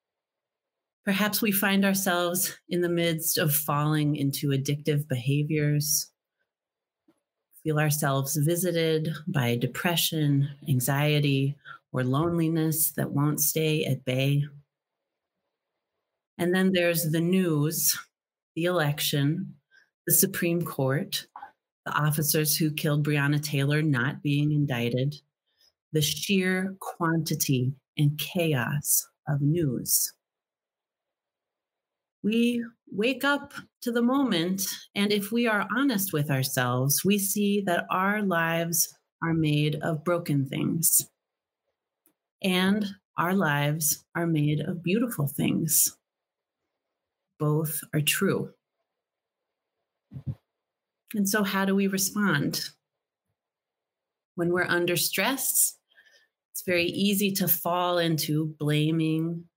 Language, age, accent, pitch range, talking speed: English, 30-49, American, 150-185 Hz, 105 wpm